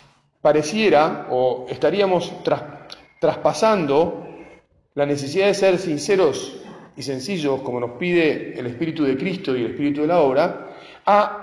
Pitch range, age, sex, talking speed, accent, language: 140-185 Hz, 40-59, male, 135 wpm, Argentinian, Spanish